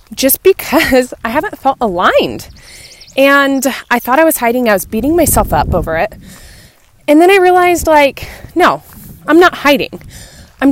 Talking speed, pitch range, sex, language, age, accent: 160 wpm, 215-275 Hz, female, English, 20-39, American